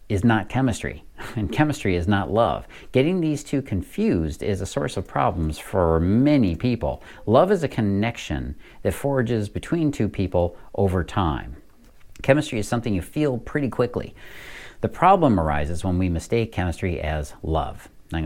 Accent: American